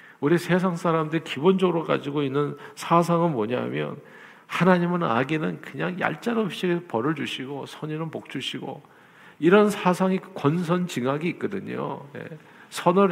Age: 50-69